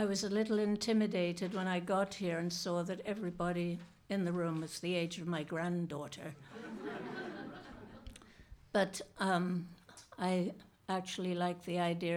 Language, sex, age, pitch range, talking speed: English, female, 60-79, 170-200 Hz, 145 wpm